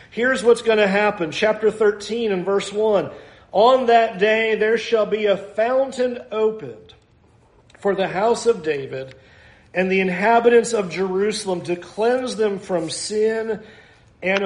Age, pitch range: 50-69, 140-210 Hz